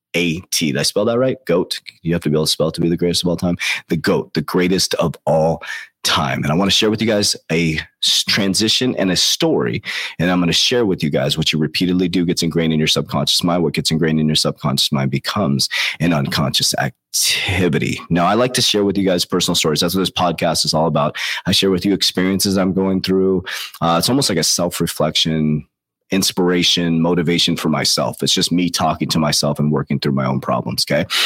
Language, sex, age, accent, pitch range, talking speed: English, male, 30-49, American, 75-95 Hz, 230 wpm